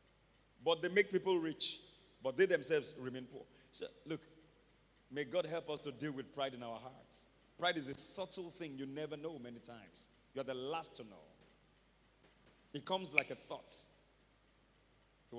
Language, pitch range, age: English, 140-230 Hz, 40-59